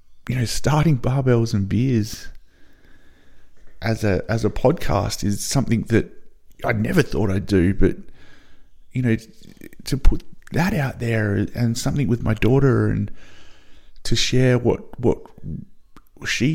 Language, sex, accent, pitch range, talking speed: English, male, Australian, 100-130 Hz, 135 wpm